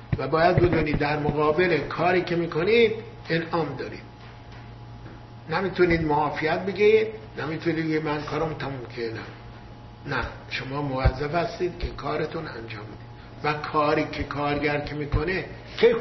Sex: male